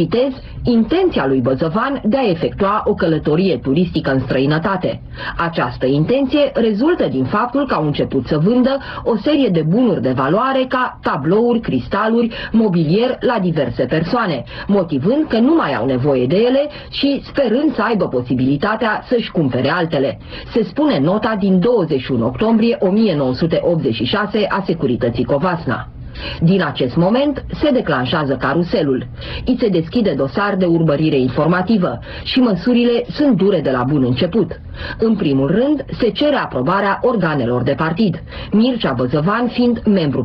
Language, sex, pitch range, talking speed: Romanian, female, 145-240 Hz, 140 wpm